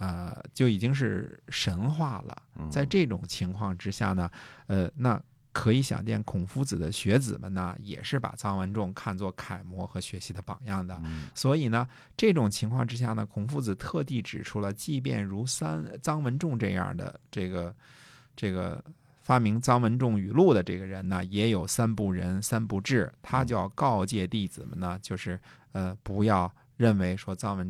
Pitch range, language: 95-130 Hz, Chinese